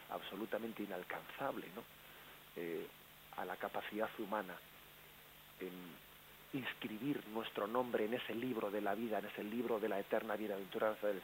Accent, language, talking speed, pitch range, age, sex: Spanish, Spanish, 140 wpm, 105-125 Hz, 40-59, male